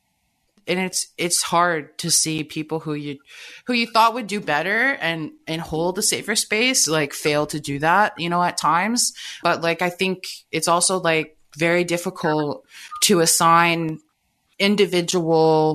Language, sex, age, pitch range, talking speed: English, female, 20-39, 150-175 Hz, 160 wpm